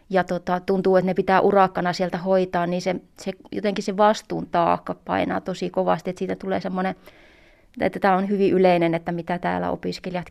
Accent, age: native, 20-39